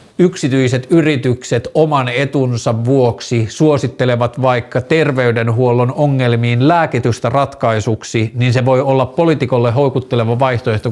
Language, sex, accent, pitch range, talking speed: Finnish, male, native, 115-140 Hz, 100 wpm